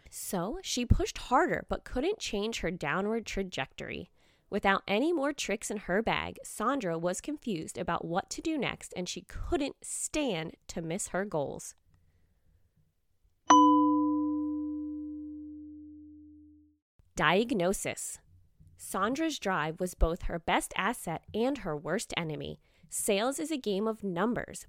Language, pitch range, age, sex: English, 165-270 Hz, 20-39, female